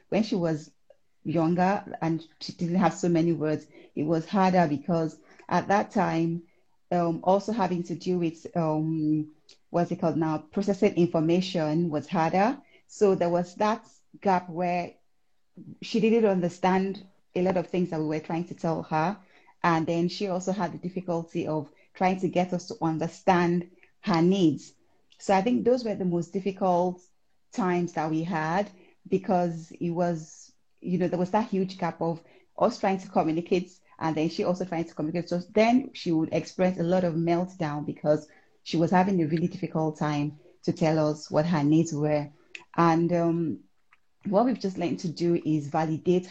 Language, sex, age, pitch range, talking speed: English, female, 30-49, 165-195 Hz, 180 wpm